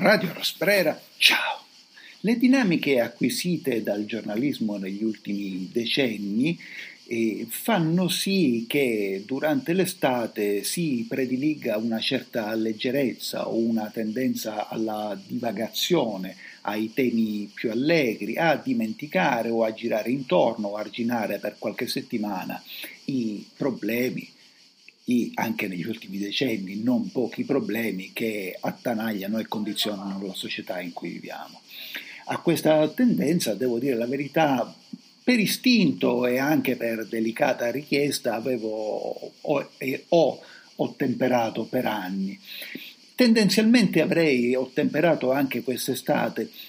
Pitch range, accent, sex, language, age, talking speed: 110-160 Hz, native, male, Italian, 50-69, 110 wpm